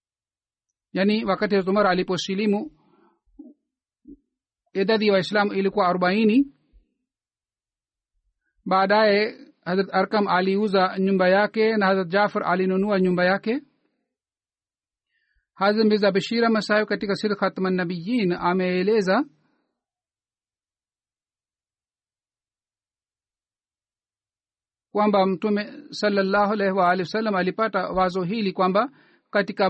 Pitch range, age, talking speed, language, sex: 185-210 Hz, 50-69, 85 wpm, Swahili, male